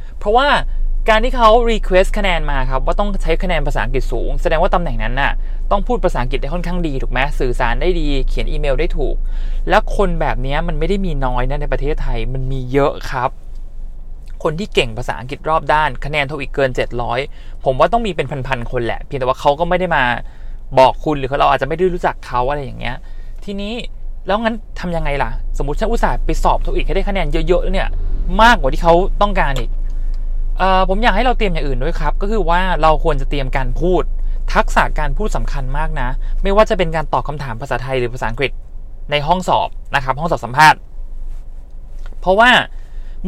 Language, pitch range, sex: English, 130-195 Hz, male